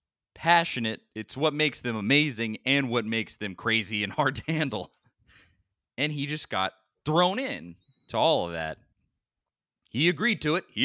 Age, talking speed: 30-49, 165 wpm